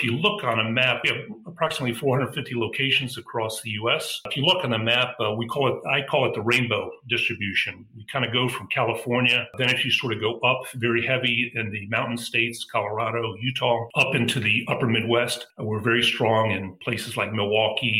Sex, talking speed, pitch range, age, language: male, 215 wpm, 110-125 Hz, 40-59, English